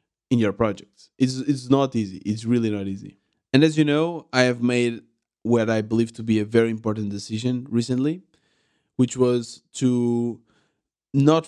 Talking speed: 165 wpm